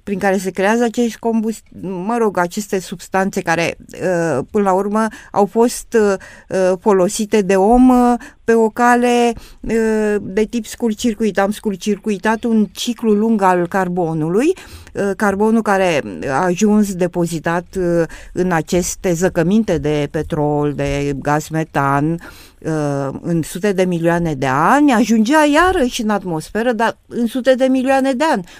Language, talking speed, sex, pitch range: Romanian, 130 wpm, female, 175-230 Hz